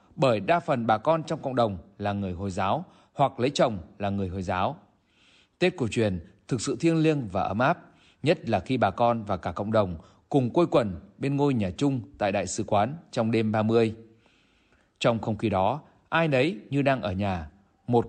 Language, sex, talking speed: Vietnamese, male, 210 wpm